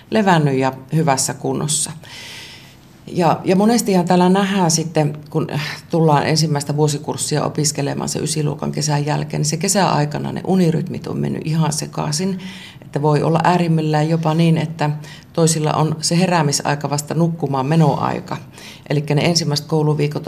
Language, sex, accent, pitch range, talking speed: Finnish, female, native, 145-170 Hz, 135 wpm